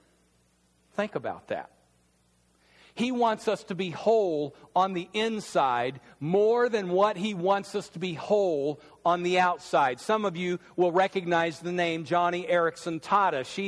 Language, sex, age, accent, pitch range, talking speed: English, male, 50-69, American, 135-210 Hz, 155 wpm